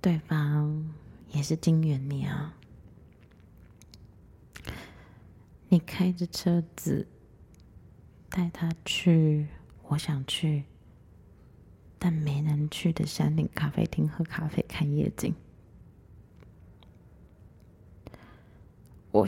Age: 20-39